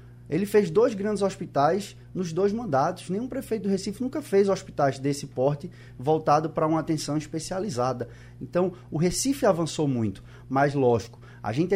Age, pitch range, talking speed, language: 20-39, 140-200 Hz, 160 wpm, Portuguese